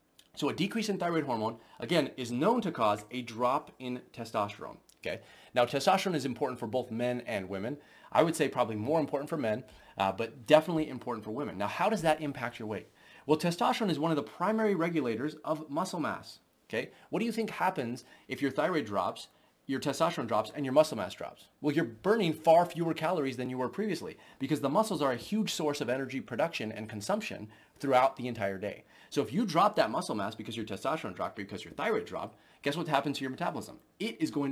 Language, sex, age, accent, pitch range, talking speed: English, male, 30-49, American, 110-155 Hz, 215 wpm